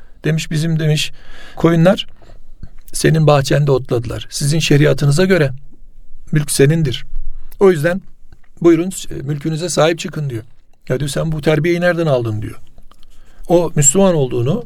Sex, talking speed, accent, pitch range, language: male, 125 wpm, native, 135-170 Hz, Turkish